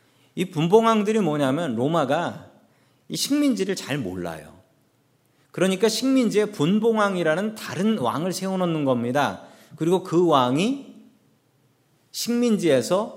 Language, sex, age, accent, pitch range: Korean, male, 40-59, native, 140-220 Hz